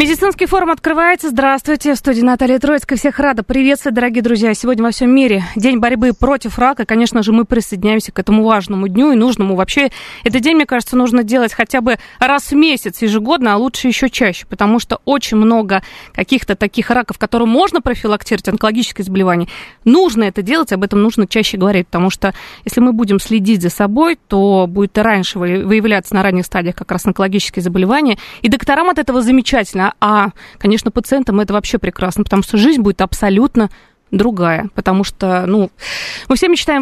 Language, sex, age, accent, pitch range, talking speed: Russian, female, 20-39, native, 200-260 Hz, 180 wpm